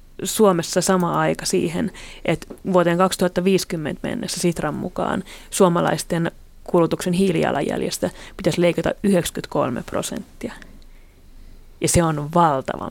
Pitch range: 160-185 Hz